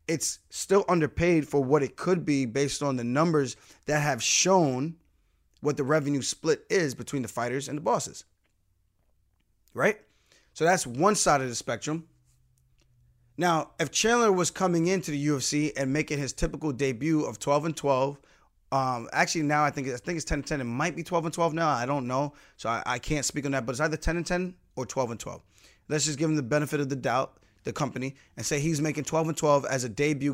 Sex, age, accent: male, 20-39, American